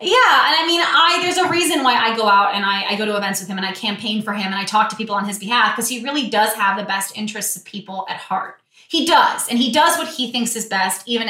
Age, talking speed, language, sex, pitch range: 20-39, 300 wpm, English, female, 205-280 Hz